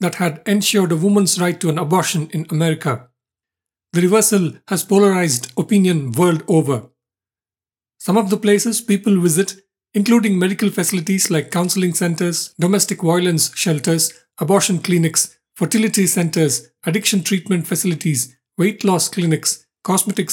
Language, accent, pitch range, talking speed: English, Indian, 160-195 Hz, 130 wpm